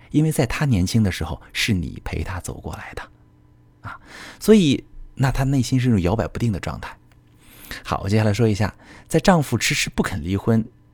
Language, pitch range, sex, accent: Chinese, 90-120 Hz, male, native